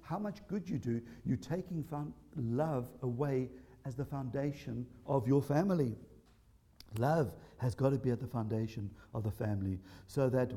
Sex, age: male, 60-79